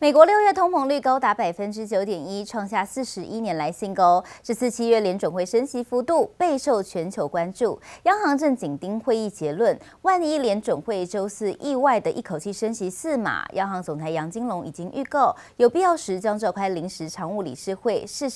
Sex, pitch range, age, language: female, 180-245 Hz, 20-39, Chinese